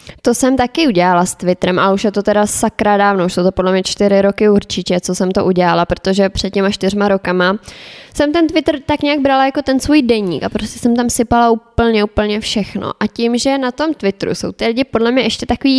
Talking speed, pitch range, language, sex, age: 230 wpm, 185-230 Hz, Czech, female, 20-39